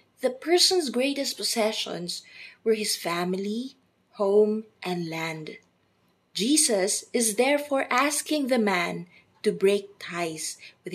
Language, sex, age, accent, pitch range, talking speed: English, female, 20-39, Filipino, 195-255 Hz, 110 wpm